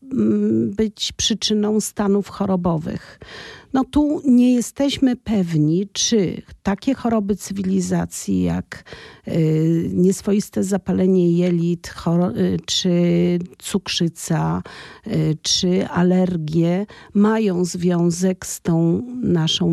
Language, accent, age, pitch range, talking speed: Polish, native, 50-69, 170-210 Hz, 80 wpm